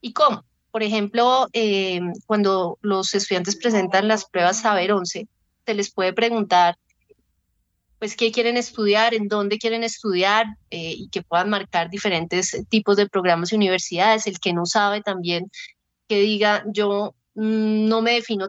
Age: 30-49